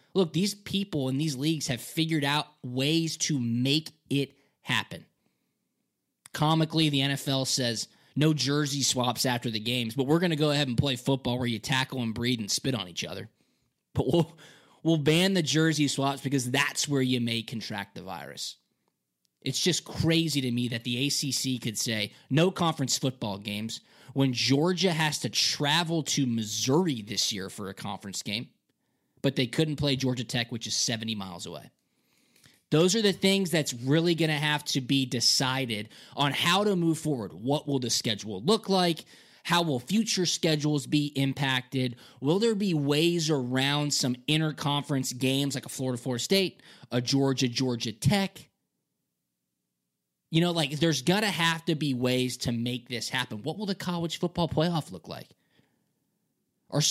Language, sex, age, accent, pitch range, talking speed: English, male, 20-39, American, 125-160 Hz, 175 wpm